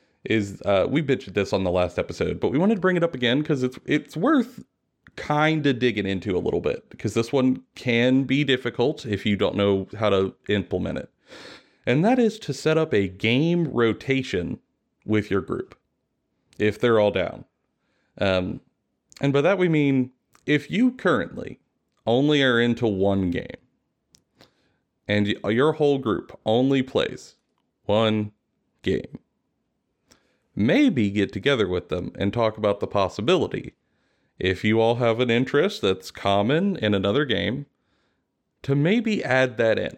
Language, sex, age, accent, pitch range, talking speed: English, male, 30-49, American, 105-145 Hz, 160 wpm